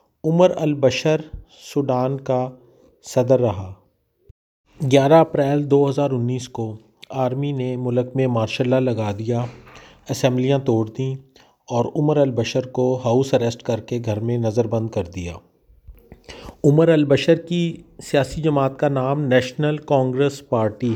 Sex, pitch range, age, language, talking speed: male, 120-145 Hz, 40-59, Urdu, 130 wpm